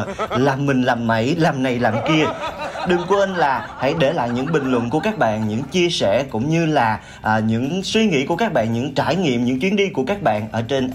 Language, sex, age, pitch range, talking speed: Vietnamese, male, 30-49, 115-155 Hz, 240 wpm